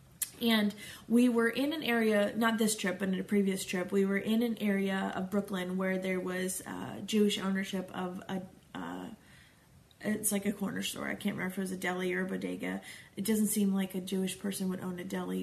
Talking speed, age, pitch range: 220 wpm, 20-39, 195-220 Hz